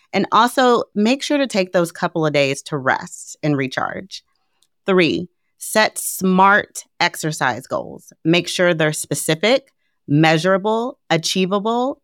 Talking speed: 125 wpm